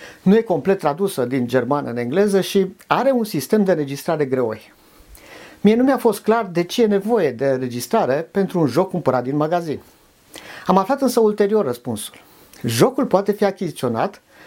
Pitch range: 140-210 Hz